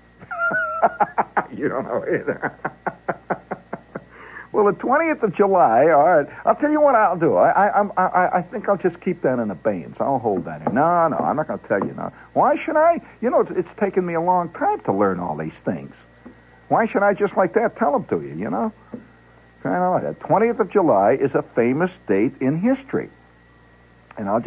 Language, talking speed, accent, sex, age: English, 210 wpm, American, male, 60-79